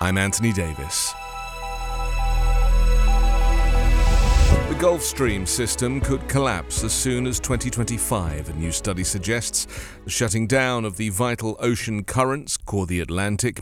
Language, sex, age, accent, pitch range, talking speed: English, male, 40-59, British, 95-130 Hz, 125 wpm